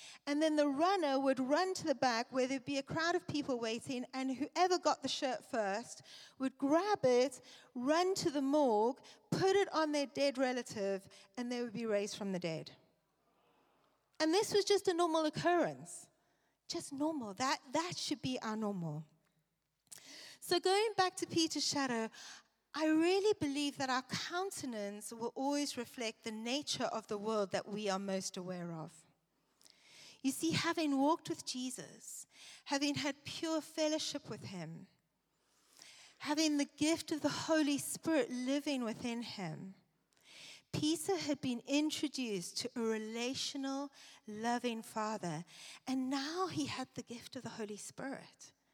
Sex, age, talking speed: female, 40-59, 155 wpm